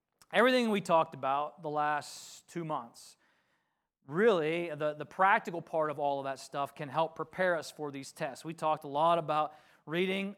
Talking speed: 180 wpm